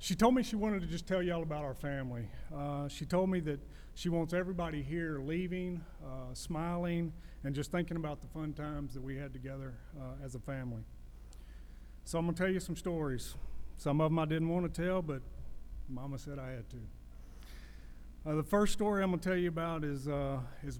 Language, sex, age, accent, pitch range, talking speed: English, male, 40-59, American, 130-160 Hz, 215 wpm